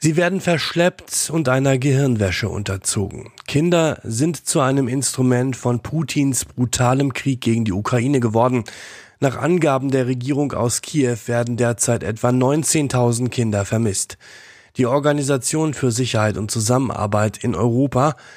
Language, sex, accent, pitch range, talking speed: German, male, German, 120-150 Hz, 130 wpm